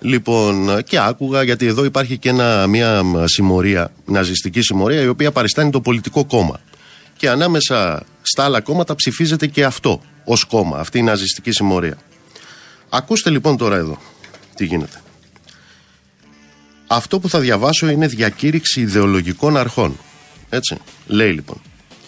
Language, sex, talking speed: Greek, male, 130 wpm